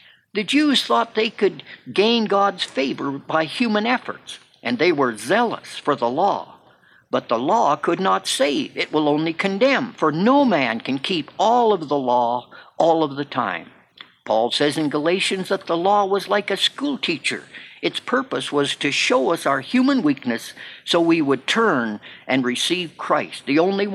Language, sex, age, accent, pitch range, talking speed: English, male, 50-69, American, 145-220 Hz, 175 wpm